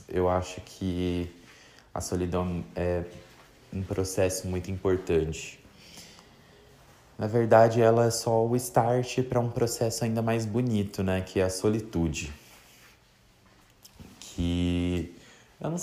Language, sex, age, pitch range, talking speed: Portuguese, male, 20-39, 85-110 Hz, 120 wpm